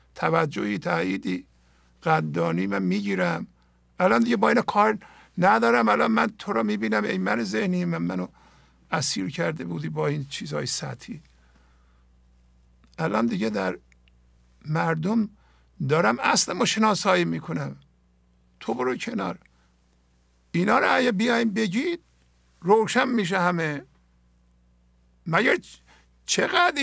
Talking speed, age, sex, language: 110 wpm, 60-79, male, English